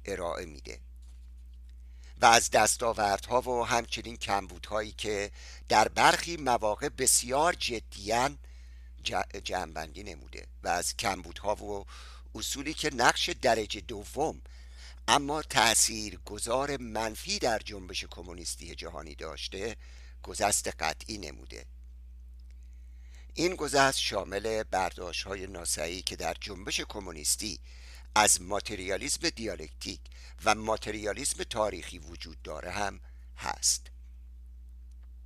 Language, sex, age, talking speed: Persian, male, 50-69, 100 wpm